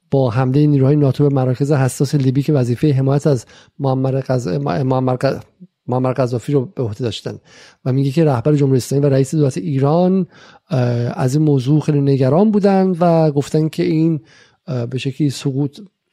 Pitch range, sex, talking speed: 135-165 Hz, male, 160 wpm